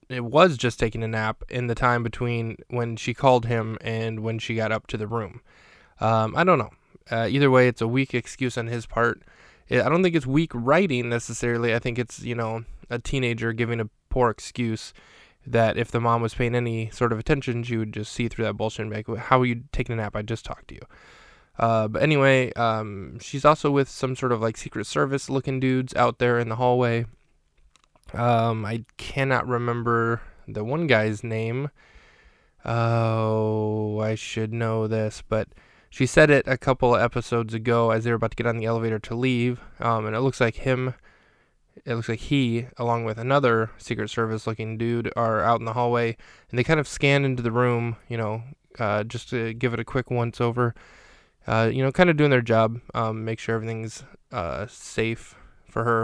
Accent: American